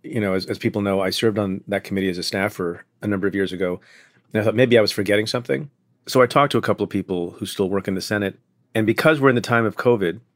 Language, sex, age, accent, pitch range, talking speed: English, male, 40-59, American, 95-115 Hz, 285 wpm